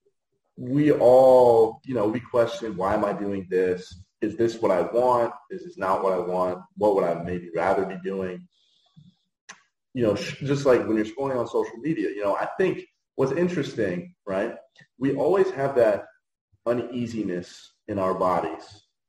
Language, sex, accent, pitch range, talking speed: English, male, American, 100-170 Hz, 170 wpm